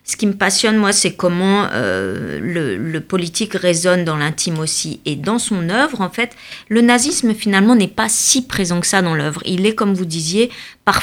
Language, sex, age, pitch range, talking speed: French, female, 40-59, 155-210 Hz, 205 wpm